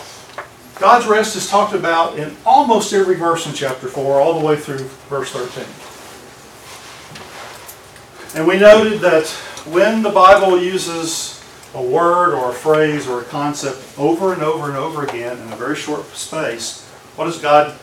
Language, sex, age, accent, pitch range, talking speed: English, male, 40-59, American, 140-190 Hz, 160 wpm